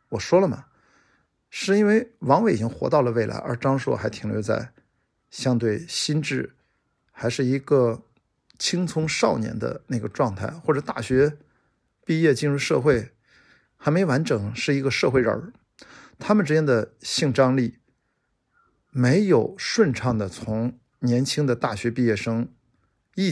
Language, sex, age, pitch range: Chinese, male, 50-69, 115-150 Hz